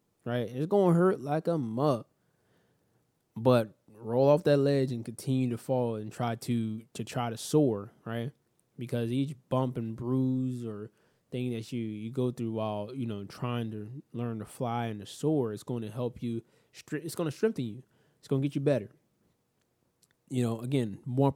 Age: 20-39